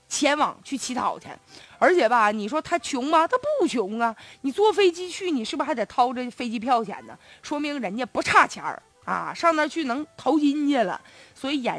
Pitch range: 250-340 Hz